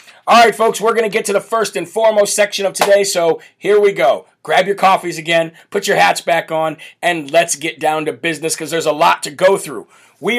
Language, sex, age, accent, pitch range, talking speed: English, male, 40-59, American, 165-205 Hz, 245 wpm